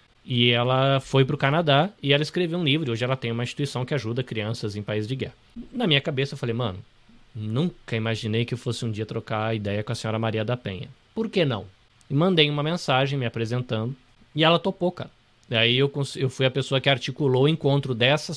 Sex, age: male, 20-39